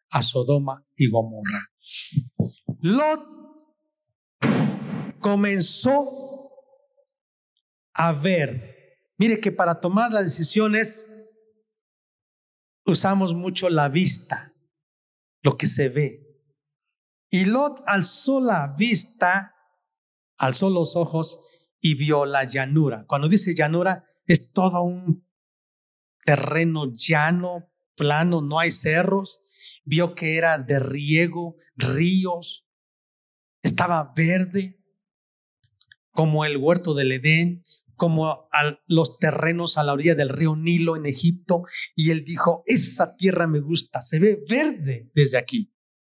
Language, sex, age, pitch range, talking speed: Spanish, male, 50-69, 150-195 Hz, 105 wpm